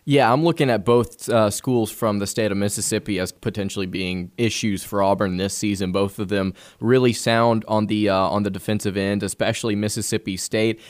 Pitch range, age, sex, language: 105-120 Hz, 20-39, male, English